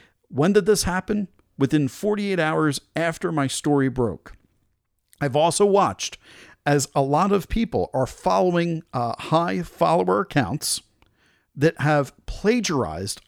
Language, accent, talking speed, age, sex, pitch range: English, American, 125 wpm, 50-69, male, 130-175 Hz